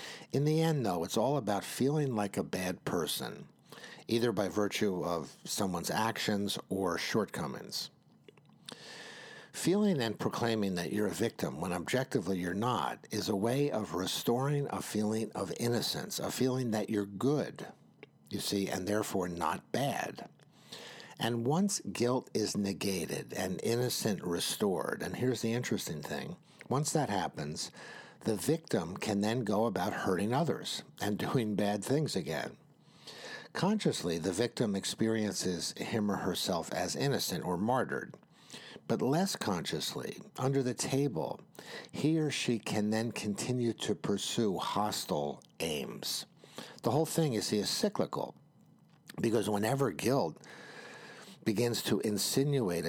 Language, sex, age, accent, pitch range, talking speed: English, male, 60-79, American, 105-140 Hz, 135 wpm